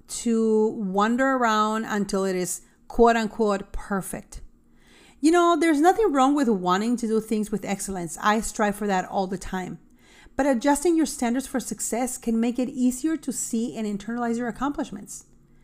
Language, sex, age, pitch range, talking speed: English, female, 40-59, 205-270 Hz, 165 wpm